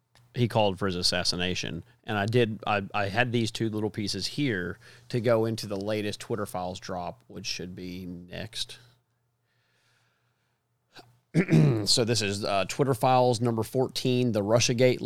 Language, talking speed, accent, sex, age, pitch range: English, 150 wpm, American, male, 30-49, 95-125 Hz